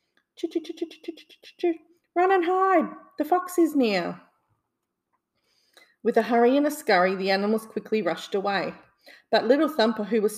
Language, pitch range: English, 180-230 Hz